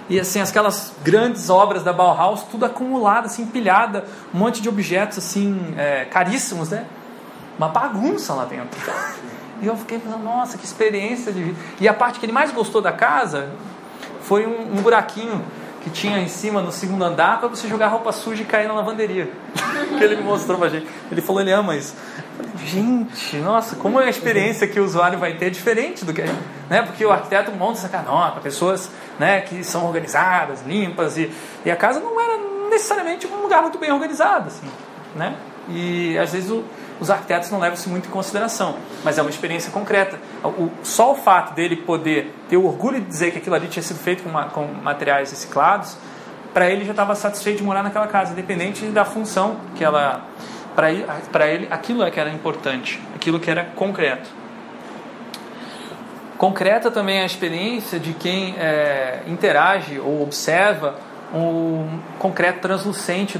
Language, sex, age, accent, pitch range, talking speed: Portuguese, male, 30-49, Brazilian, 175-220 Hz, 185 wpm